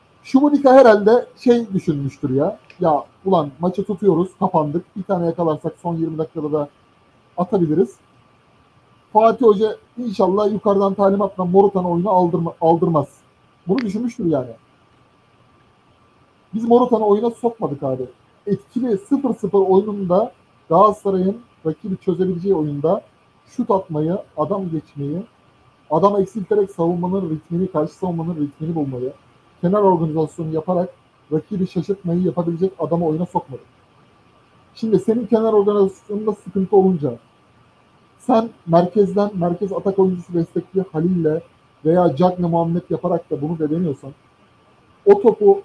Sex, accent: male, native